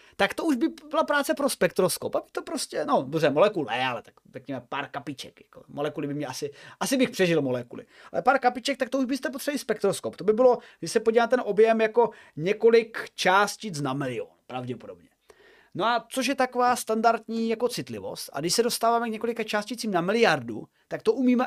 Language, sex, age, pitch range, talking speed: Czech, male, 30-49, 175-250 Hz, 200 wpm